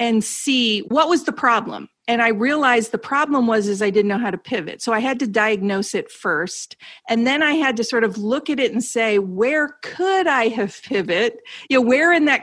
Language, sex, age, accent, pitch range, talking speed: English, female, 40-59, American, 205-250 Hz, 230 wpm